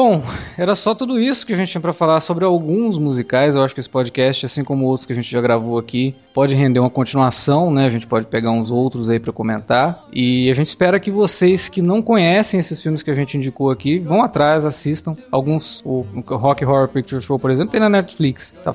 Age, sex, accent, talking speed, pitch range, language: 20-39, male, Brazilian, 235 wpm, 130-170 Hz, Portuguese